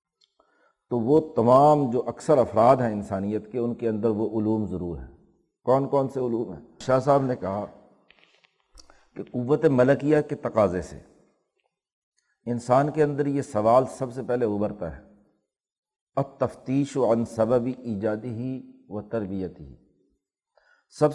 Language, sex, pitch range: Urdu, male, 105-130 Hz